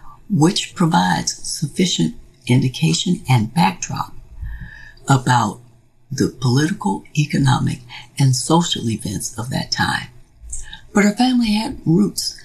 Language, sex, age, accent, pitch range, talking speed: English, female, 60-79, American, 120-165 Hz, 100 wpm